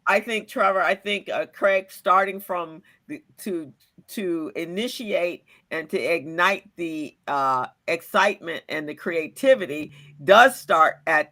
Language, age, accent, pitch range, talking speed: English, 50-69, American, 155-200 Hz, 135 wpm